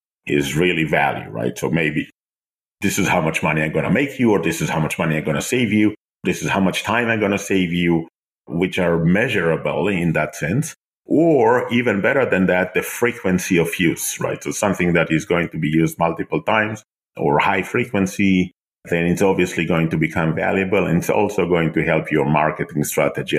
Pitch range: 80-100 Hz